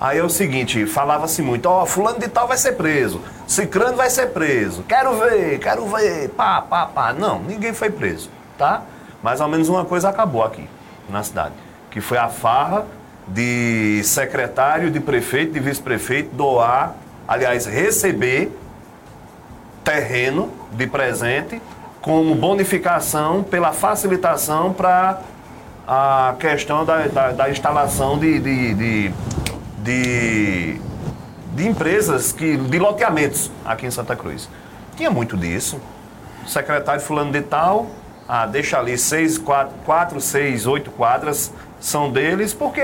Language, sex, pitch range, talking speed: Portuguese, male, 130-180 Hz, 135 wpm